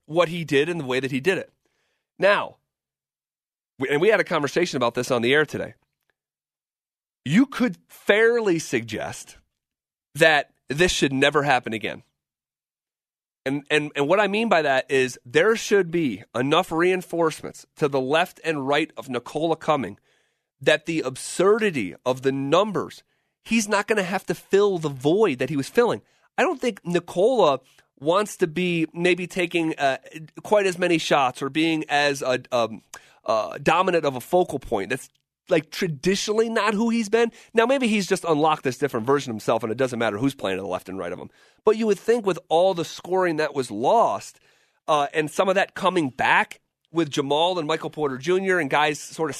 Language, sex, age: English, male, 30-49